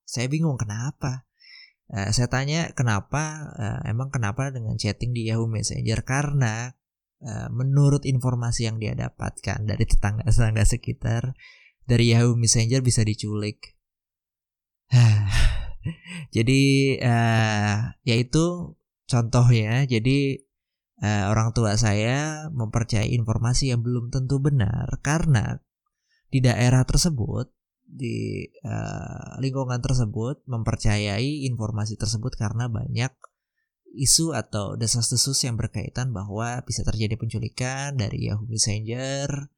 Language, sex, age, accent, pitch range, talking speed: Indonesian, male, 20-39, native, 110-135 Hz, 105 wpm